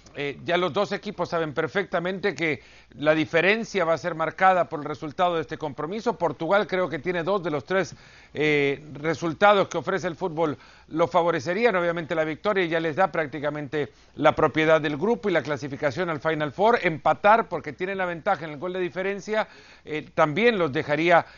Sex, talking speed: male, 190 wpm